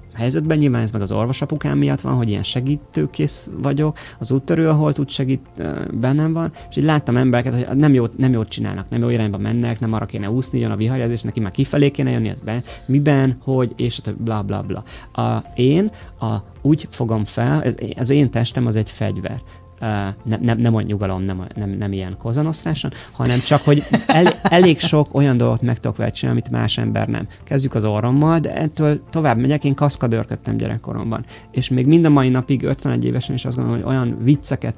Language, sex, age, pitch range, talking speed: Hungarian, male, 30-49, 105-135 Hz, 200 wpm